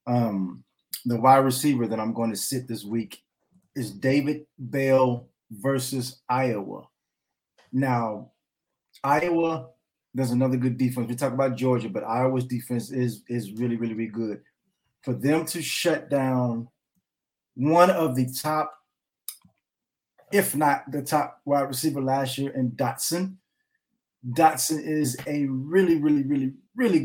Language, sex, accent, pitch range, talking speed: English, male, American, 125-150 Hz, 135 wpm